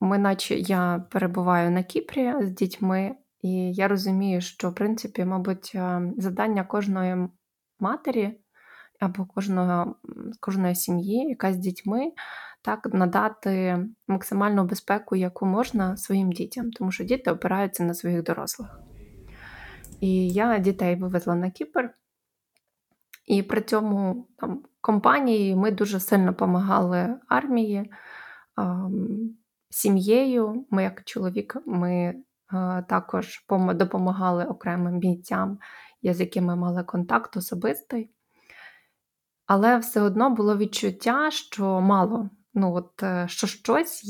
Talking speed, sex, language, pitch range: 115 wpm, female, Ukrainian, 185-220 Hz